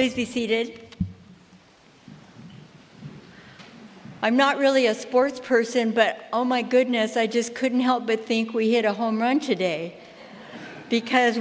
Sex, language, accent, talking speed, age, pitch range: female, English, American, 135 wpm, 60-79, 210-270 Hz